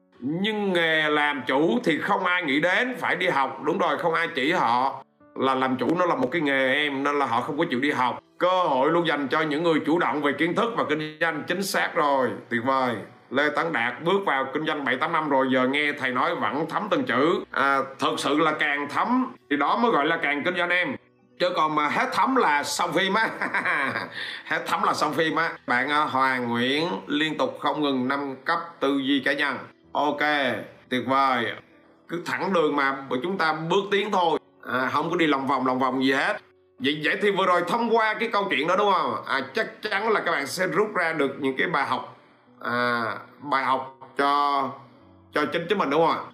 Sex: male